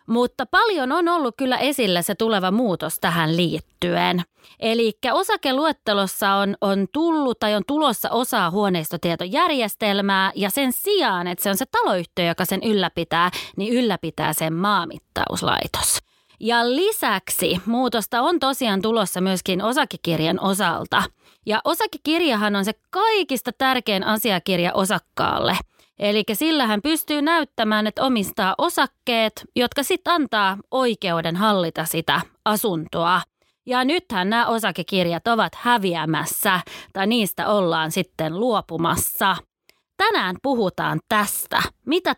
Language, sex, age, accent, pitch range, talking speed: Finnish, female, 30-49, native, 185-255 Hz, 120 wpm